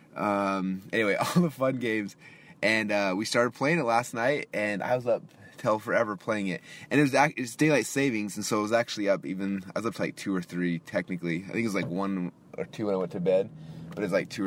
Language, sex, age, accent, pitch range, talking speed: English, male, 20-39, American, 100-145 Hz, 255 wpm